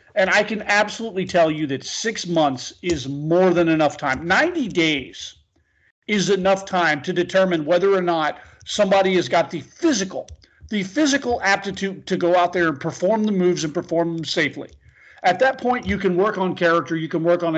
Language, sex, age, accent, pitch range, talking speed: English, male, 40-59, American, 165-210 Hz, 190 wpm